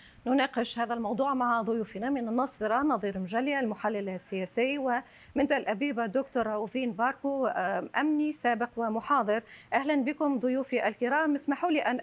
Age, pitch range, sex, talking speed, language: 40-59, 235-305 Hz, female, 130 wpm, Arabic